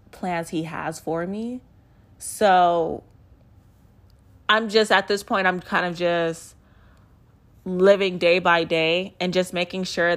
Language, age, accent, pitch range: English, 20-39, American, 165-195 Hz